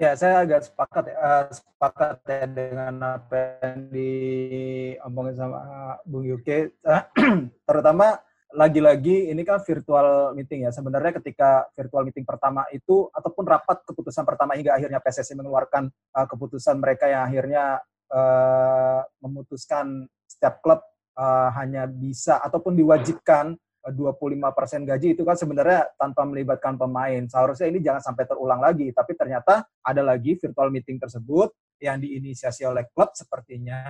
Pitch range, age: 130-165 Hz, 20-39